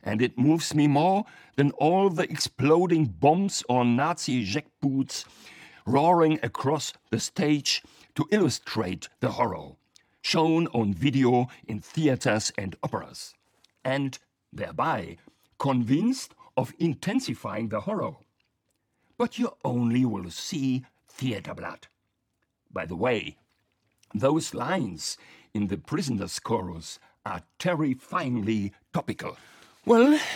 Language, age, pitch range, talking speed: English, 60-79, 120-185 Hz, 110 wpm